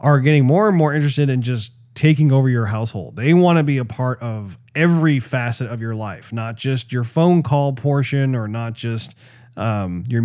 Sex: male